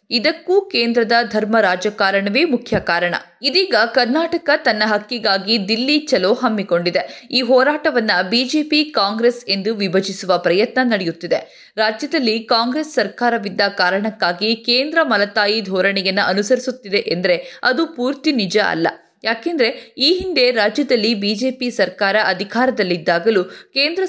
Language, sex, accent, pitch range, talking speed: Kannada, female, native, 200-260 Hz, 105 wpm